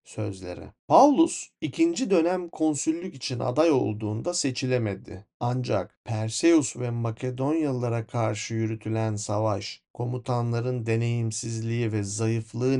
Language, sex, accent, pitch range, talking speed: Turkish, male, native, 110-135 Hz, 95 wpm